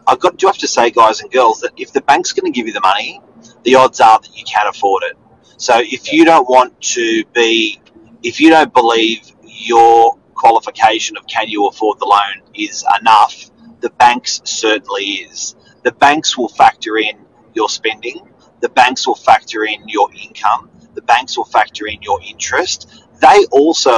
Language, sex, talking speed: English, male, 190 wpm